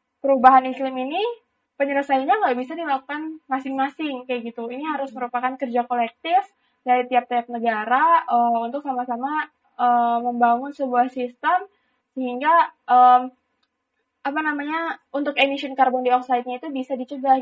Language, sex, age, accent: Indonesian, female, 20-39, native